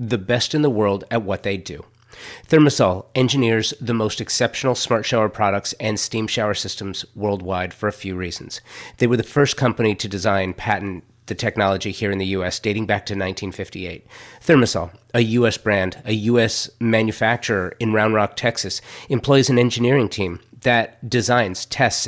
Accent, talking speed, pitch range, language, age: American, 170 wpm, 100-130 Hz, English, 30-49